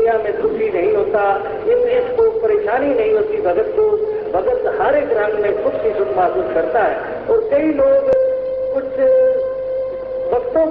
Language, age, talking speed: Hindi, 50-69, 150 wpm